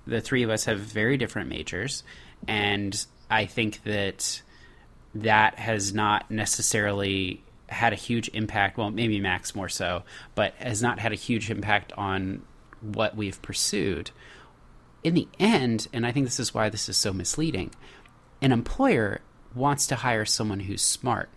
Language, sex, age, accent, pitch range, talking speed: English, male, 30-49, American, 105-150 Hz, 160 wpm